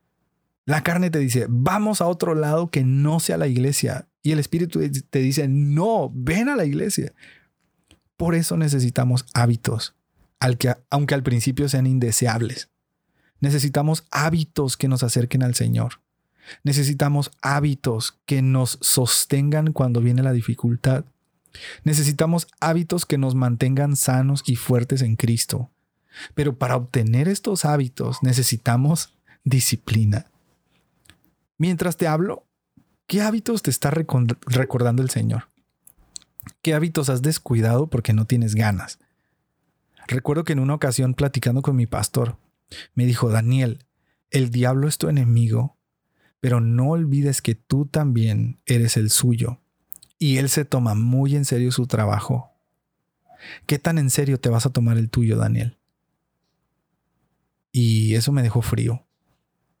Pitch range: 120-150 Hz